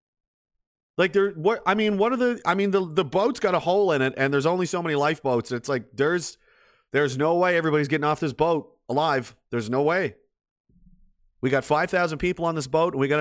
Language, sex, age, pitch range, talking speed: English, male, 30-49, 135-215 Hz, 225 wpm